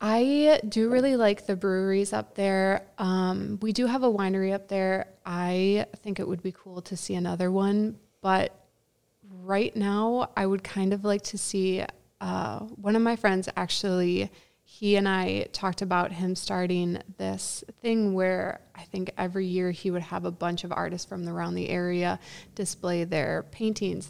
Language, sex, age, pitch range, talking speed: English, female, 20-39, 175-200 Hz, 175 wpm